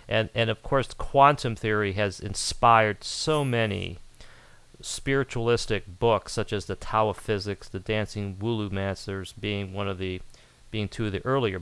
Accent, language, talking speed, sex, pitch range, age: American, English, 160 wpm, male, 105-125 Hz, 40-59